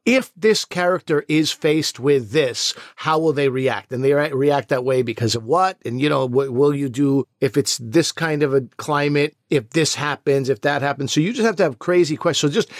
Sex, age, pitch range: male, 50-69, 135-165 Hz